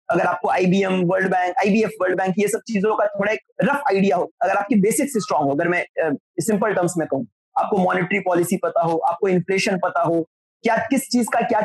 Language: Hindi